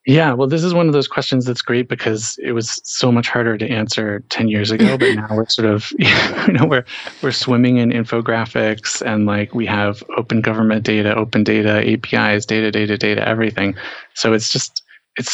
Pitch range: 105-125 Hz